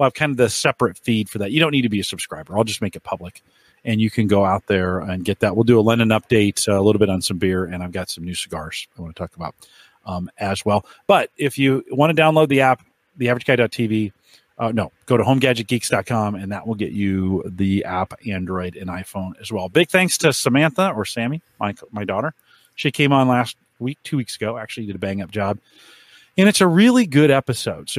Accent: American